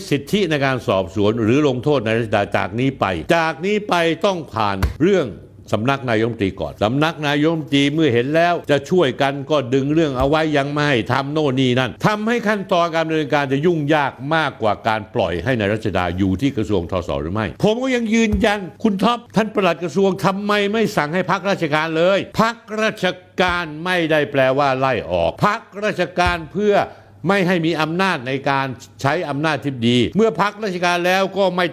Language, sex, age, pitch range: Thai, male, 60-79, 125-180 Hz